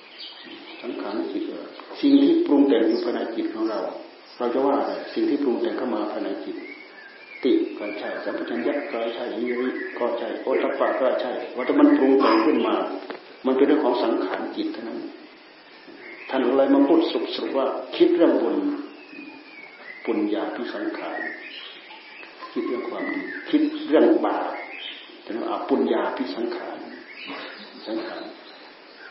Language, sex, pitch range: Thai, male, 295-345 Hz